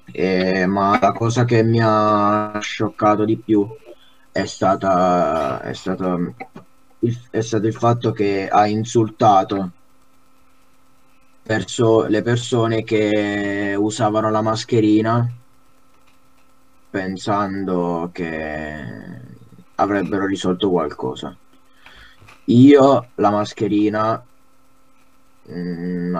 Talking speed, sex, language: 90 wpm, male, Italian